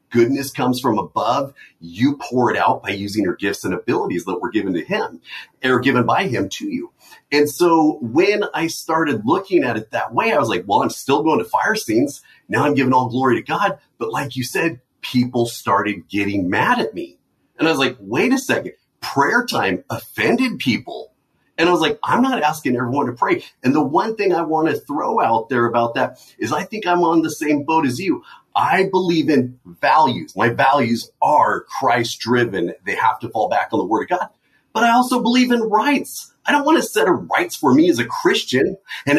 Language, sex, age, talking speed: English, male, 40-59, 215 wpm